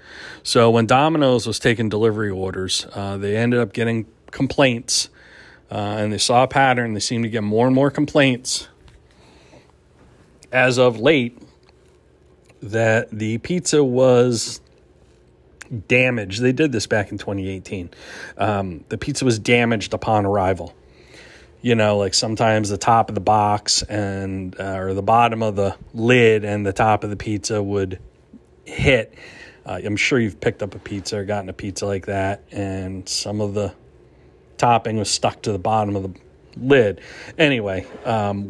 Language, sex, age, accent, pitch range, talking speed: English, male, 40-59, American, 100-125 Hz, 160 wpm